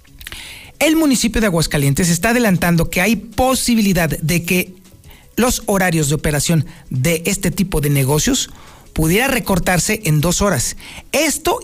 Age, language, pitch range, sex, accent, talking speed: 40-59, Spanish, 170-255 Hz, male, Mexican, 135 wpm